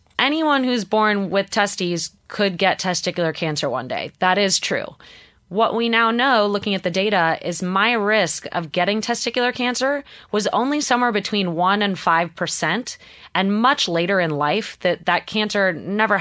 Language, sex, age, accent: English, female, 30-49, American